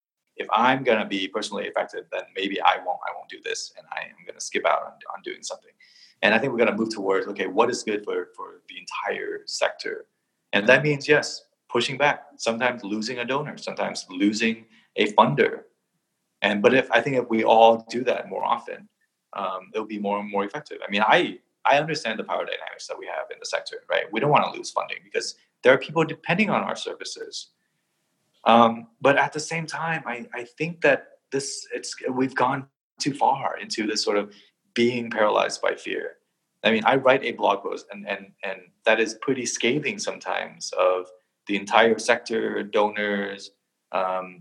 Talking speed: 205 wpm